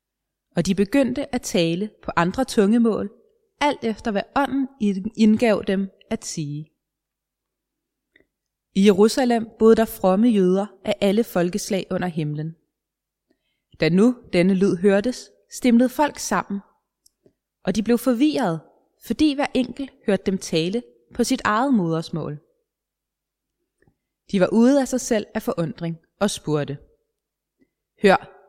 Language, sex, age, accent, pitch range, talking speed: Danish, female, 20-39, native, 190-250 Hz, 125 wpm